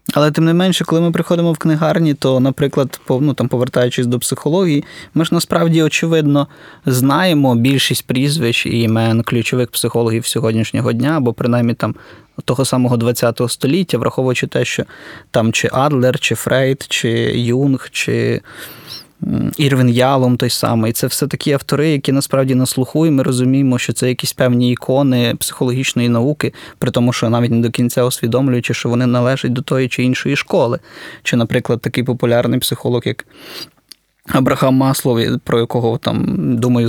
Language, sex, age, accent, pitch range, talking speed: Ukrainian, male, 20-39, native, 125-150 Hz, 155 wpm